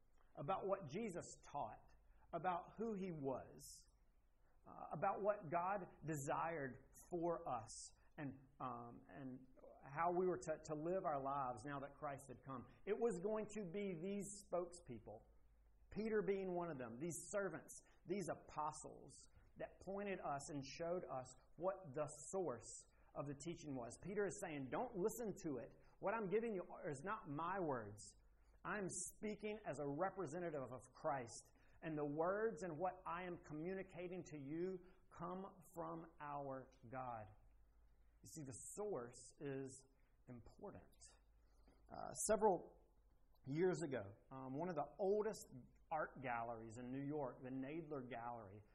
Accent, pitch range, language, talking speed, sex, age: American, 130-180 Hz, English, 150 wpm, male, 40-59